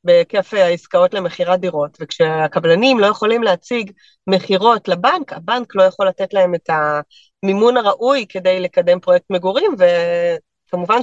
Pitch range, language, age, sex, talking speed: 185-240 Hz, Hebrew, 30-49, female, 125 wpm